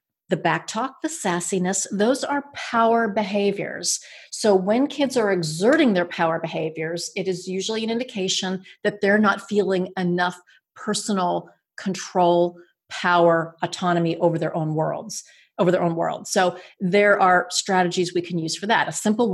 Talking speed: 155 wpm